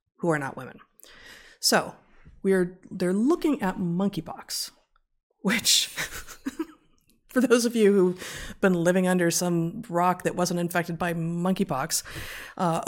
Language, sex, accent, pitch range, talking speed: English, female, American, 160-195 Hz, 130 wpm